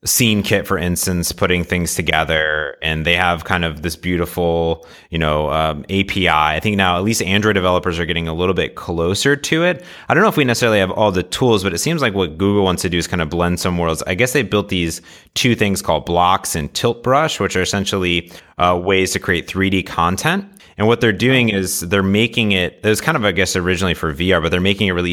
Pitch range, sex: 80-100 Hz, male